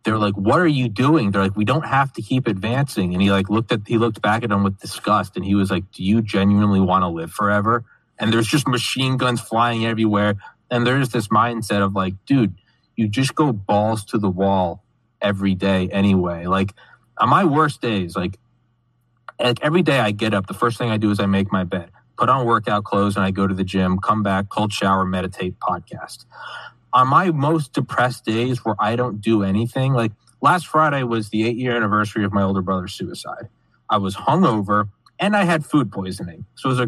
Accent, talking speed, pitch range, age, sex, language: American, 215 wpm, 100-130 Hz, 20-39, male, English